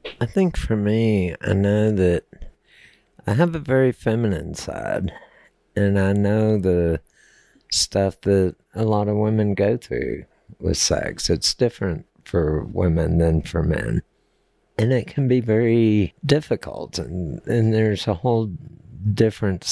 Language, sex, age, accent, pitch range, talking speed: English, male, 60-79, American, 90-115 Hz, 140 wpm